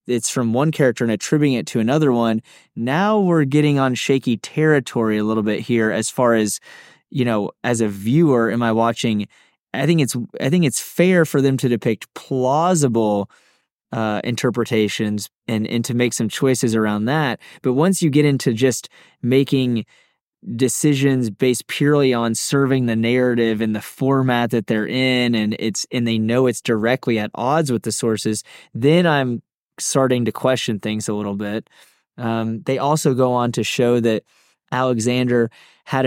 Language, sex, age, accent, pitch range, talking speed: English, male, 20-39, American, 115-135 Hz, 175 wpm